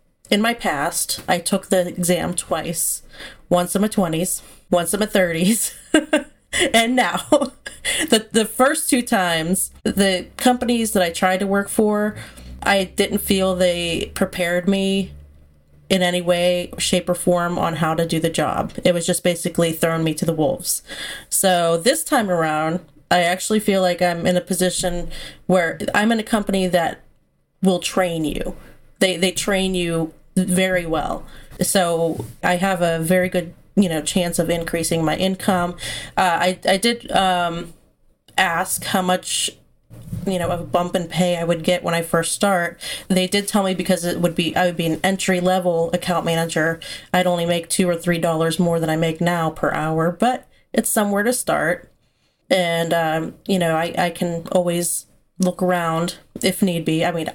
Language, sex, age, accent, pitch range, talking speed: English, female, 30-49, American, 170-195 Hz, 180 wpm